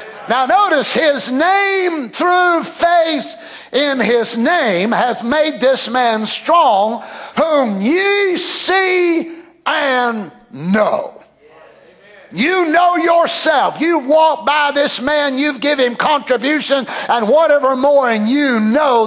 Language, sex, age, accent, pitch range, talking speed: English, male, 50-69, American, 265-340 Hz, 115 wpm